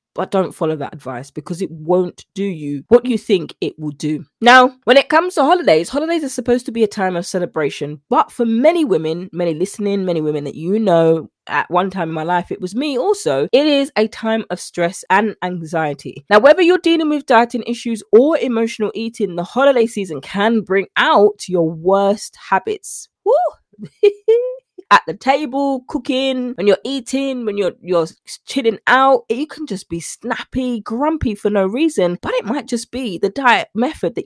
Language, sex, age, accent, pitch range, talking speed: English, female, 20-39, British, 170-255 Hz, 195 wpm